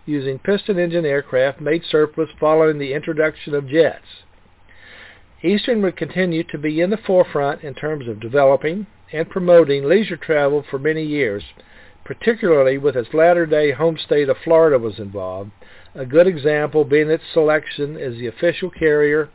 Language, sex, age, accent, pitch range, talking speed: English, male, 50-69, American, 135-170 Hz, 150 wpm